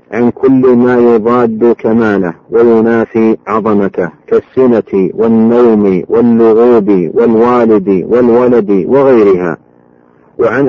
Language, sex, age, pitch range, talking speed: Arabic, male, 50-69, 110-130 Hz, 80 wpm